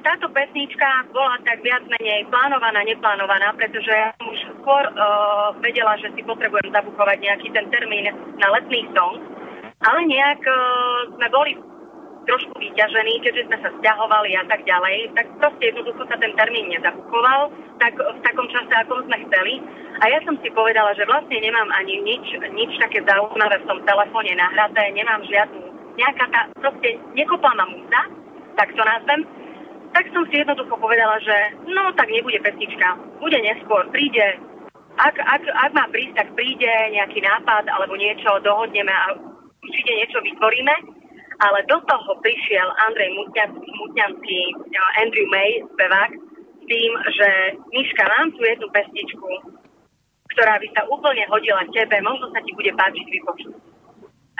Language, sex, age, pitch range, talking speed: Slovak, female, 30-49, 215-310 Hz, 155 wpm